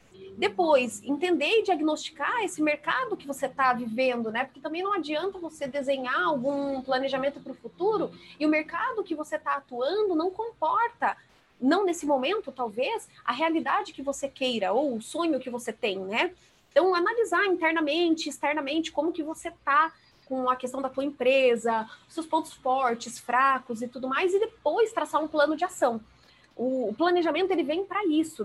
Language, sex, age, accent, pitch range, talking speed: Portuguese, female, 30-49, Brazilian, 265-350 Hz, 170 wpm